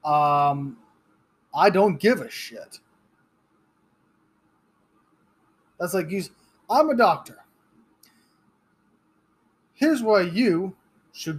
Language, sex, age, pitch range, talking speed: English, male, 30-49, 145-190 Hz, 80 wpm